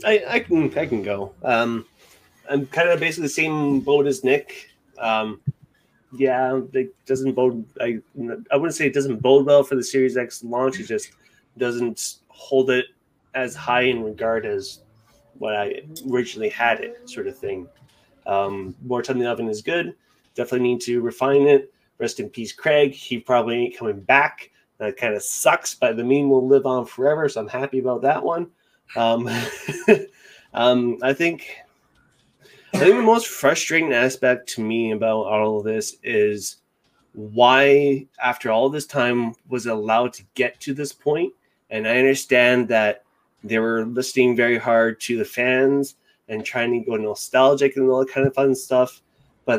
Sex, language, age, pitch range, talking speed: male, English, 30-49, 115-140 Hz, 175 wpm